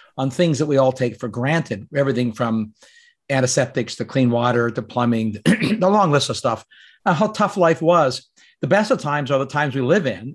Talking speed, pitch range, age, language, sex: 215 wpm, 120-155 Hz, 50-69, English, male